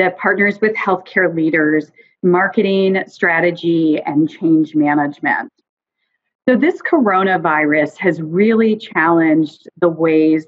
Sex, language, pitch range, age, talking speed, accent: female, English, 165-210 Hz, 40-59, 95 wpm, American